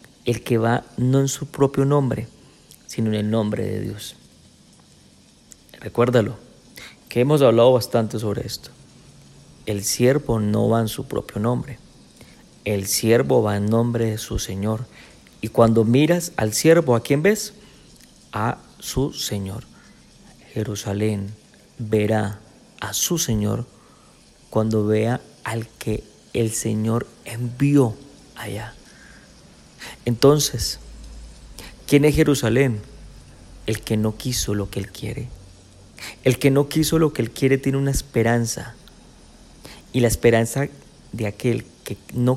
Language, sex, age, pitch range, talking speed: Spanish, male, 40-59, 110-125 Hz, 130 wpm